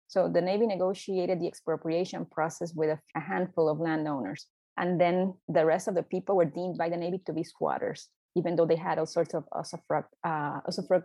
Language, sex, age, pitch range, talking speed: English, female, 30-49, 160-190 Hz, 195 wpm